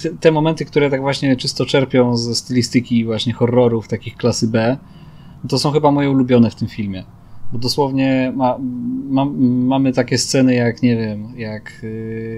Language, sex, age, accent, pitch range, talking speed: Polish, male, 20-39, native, 115-130 Hz, 160 wpm